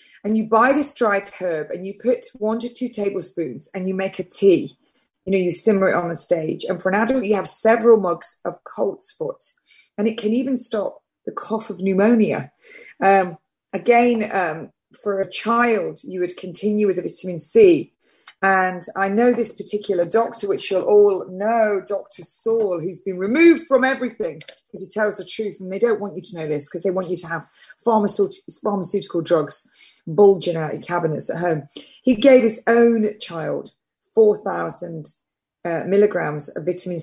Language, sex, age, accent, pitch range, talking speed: English, female, 30-49, British, 180-235 Hz, 185 wpm